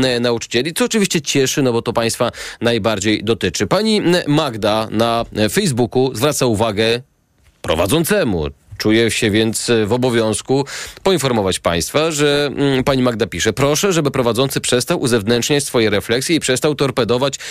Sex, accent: male, native